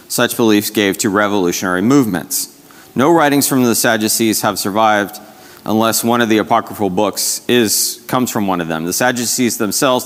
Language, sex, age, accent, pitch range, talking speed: English, male, 30-49, American, 105-125 Hz, 165 wpm